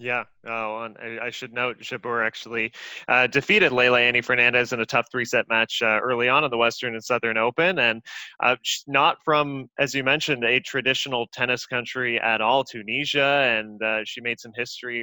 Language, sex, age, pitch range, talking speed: English, male, 20-39, 115-130 Hz, 190 wpm